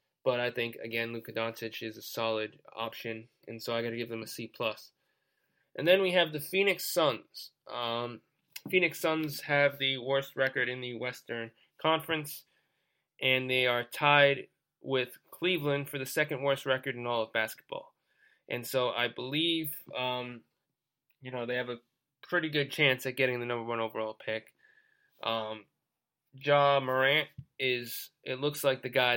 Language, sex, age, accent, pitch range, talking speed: English, male, 20-39, American, 120-145 Hz, 170 wpm